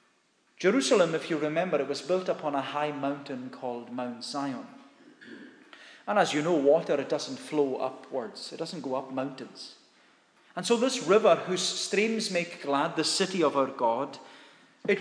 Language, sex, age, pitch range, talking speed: English, male, 30-49, 150-205 Hz, 170 wpm